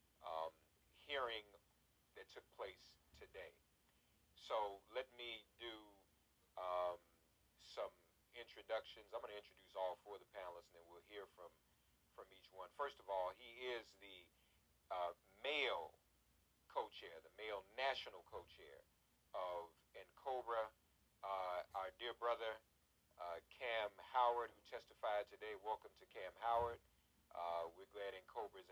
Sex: male